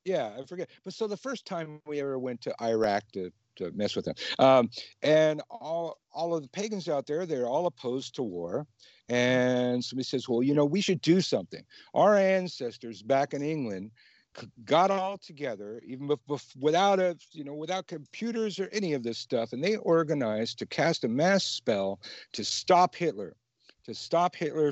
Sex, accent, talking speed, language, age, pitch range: male, American, 185 wpm, English, 50-69, 125-180 Hz